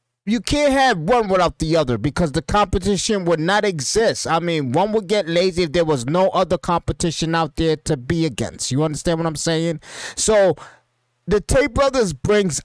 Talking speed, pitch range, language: 190 wpm, 140-205 Hz, English